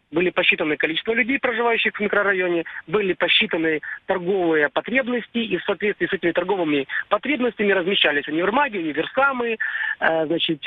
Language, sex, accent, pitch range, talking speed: Russian, male, native, 165-210 Hz, 130 wpm